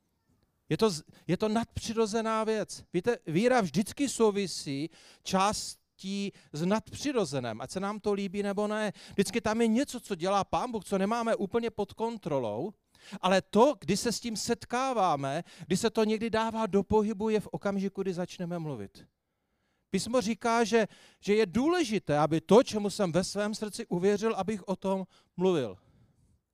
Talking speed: 160 wpm